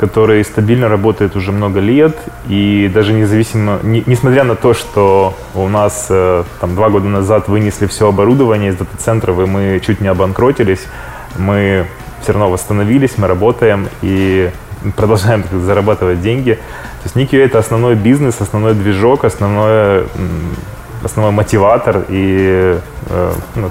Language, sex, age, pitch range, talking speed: Russian, male, 20-39, 100-115 Hz, 135 wpm